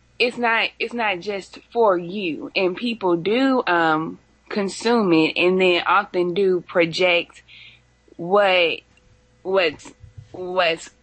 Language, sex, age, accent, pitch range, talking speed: English, female, 20-39, American, 175-235 Hz, 115 wpm